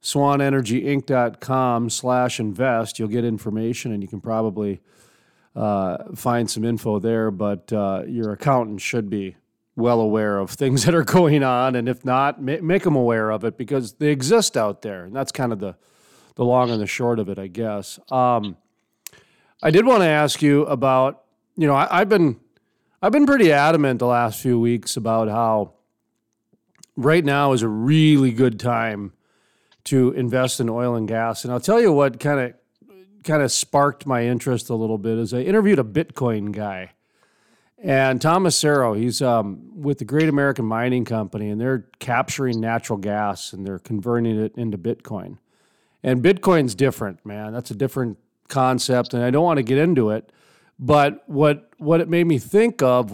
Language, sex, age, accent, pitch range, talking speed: English, male, 40-59, American, 110-140 Hz, 180 wpm